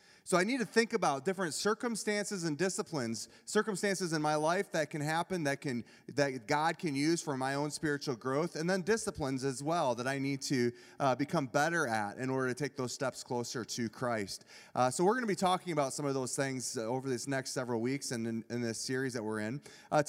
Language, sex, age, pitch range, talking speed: English, male, 30-49, 130-175 Hz, 225 wpm